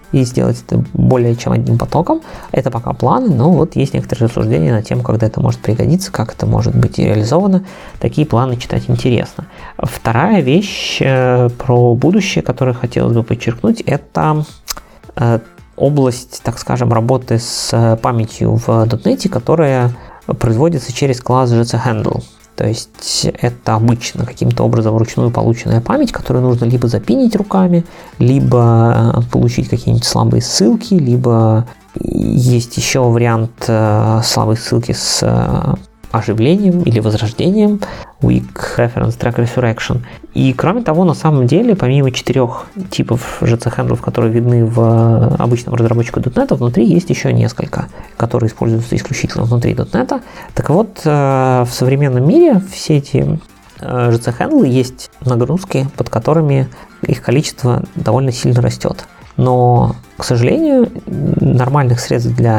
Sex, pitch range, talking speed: male, 115-150 Hz, 125 wpm